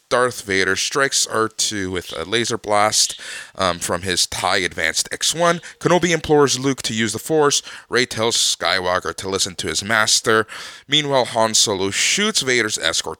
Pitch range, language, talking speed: 95-125 Hz, English, 160 wpm